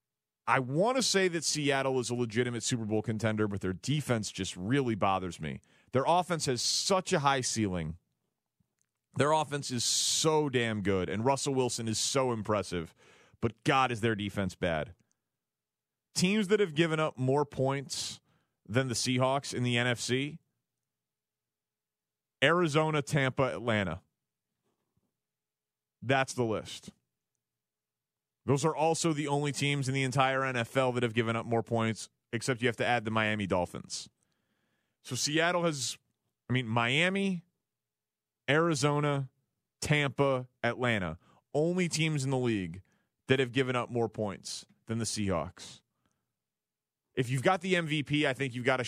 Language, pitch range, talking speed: English, 105-140 Hz, 145 wpm